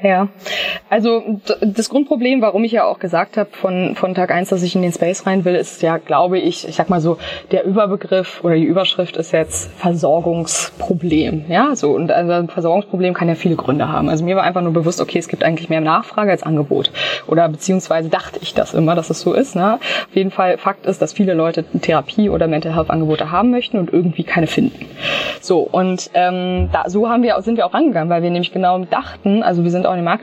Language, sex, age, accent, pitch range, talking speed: German, female, 20-39, German, 170-210 Hz, 230 wpm